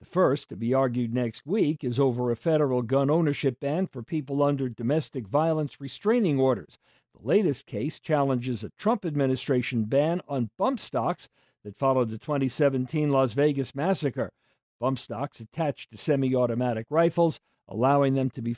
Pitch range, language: 130-175 Hz, English